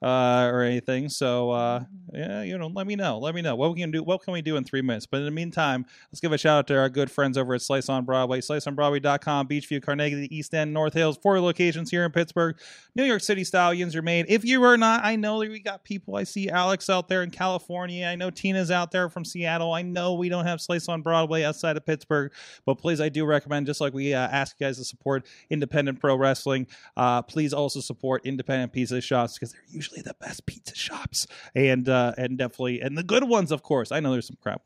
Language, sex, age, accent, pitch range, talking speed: English, male, 20-39, American, 130-180 Hz, 250 wpm